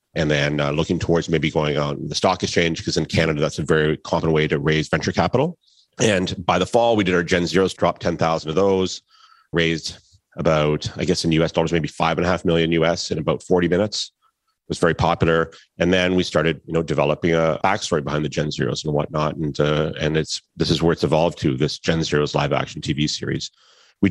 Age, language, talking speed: 30-49, English, 220 wpm